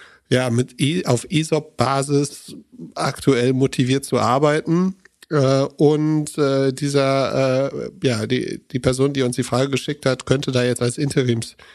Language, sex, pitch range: German, male, 115-135 Hz